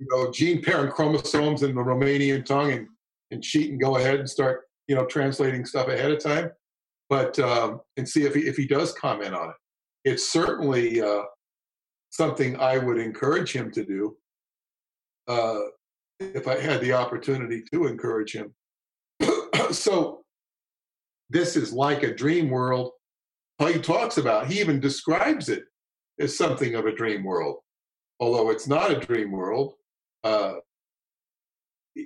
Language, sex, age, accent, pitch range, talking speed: English, male, 50-69, American, 130-165 Hz, 150 wpm